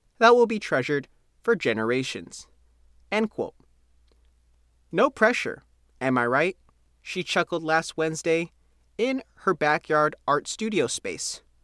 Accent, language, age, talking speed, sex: American, English, 30-49, 120 wpm, male